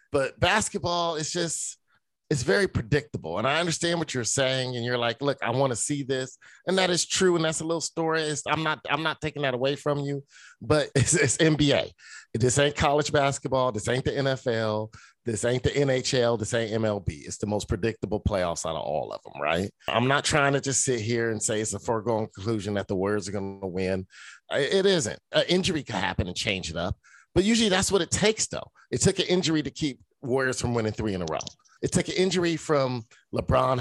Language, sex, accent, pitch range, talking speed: English, male, American, 110-155 Hz, 220 wpm